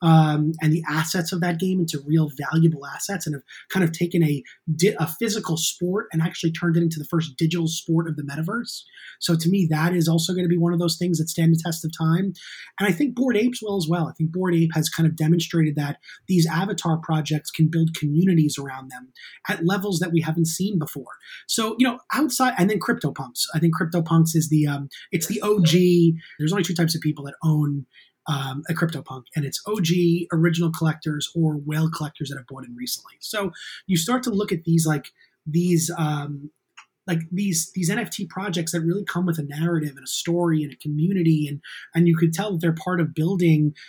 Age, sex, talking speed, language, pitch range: 20-39, male, 220 wpm, English, 155-180 Hz